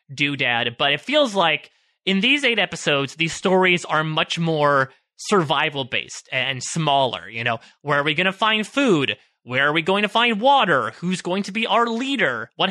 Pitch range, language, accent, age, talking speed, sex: 140-195 Hz, English, American, 30-49, 195 wpm, male